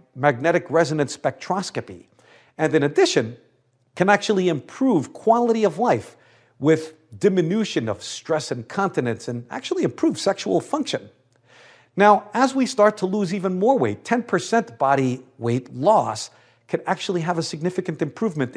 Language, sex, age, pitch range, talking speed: English, male, 50-69, 135-200 Hz, 135 wpm